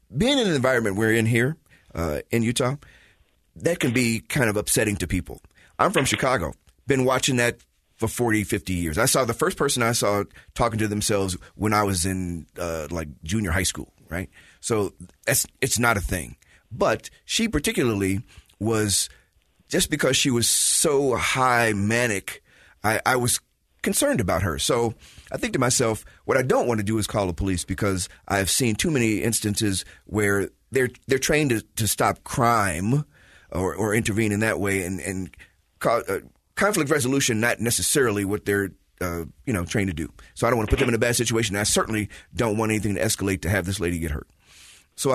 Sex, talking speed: male, 195 wpm